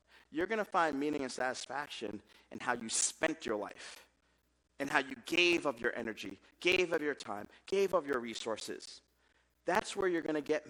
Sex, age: male, 40-59